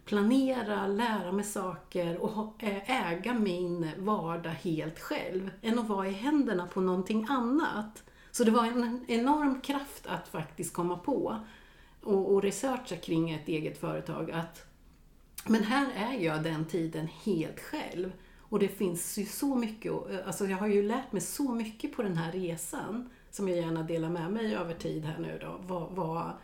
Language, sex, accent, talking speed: Swedish, female, native, 165 wpm